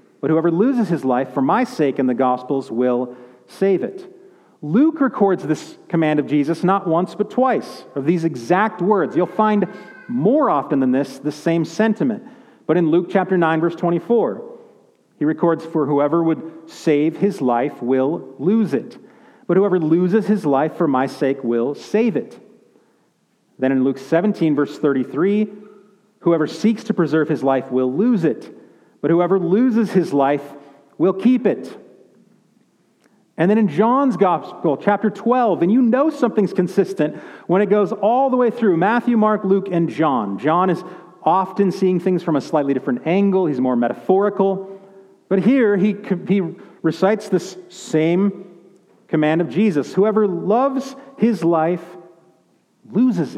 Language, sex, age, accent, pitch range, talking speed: English, male, 40-59, American, 155-210 Hz, 155 wpm